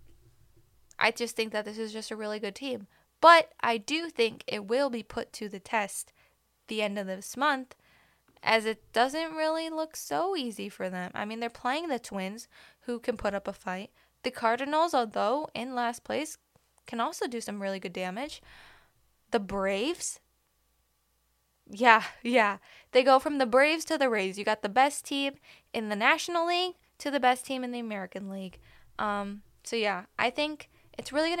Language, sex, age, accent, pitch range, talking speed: English, female, 10-29, American, 210-275 Hz, 185 wpm